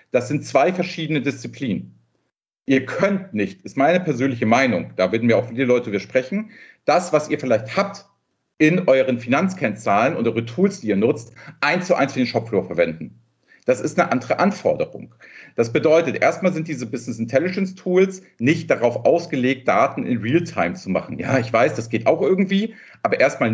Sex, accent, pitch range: male, German, 120-170 Hz